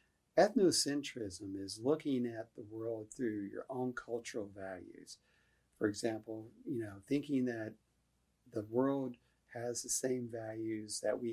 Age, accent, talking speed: 50-69, American, 130 wpm